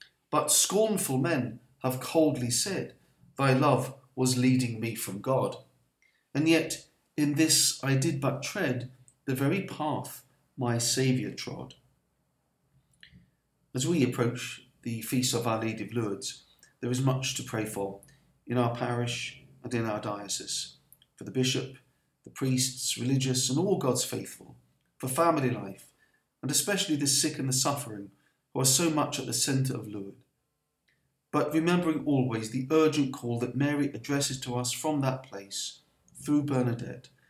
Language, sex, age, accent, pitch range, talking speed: English, male, 40-59, British, 120-150 Hz, 150 wpm